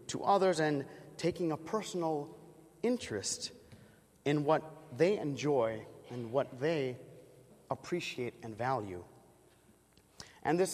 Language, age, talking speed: English, 30-49, 105 wpm